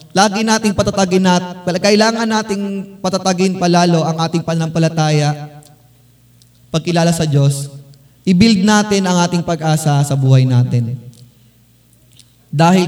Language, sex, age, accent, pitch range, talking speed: Filipino, male, 20-39, native, 130-170 Hz, 110 wpm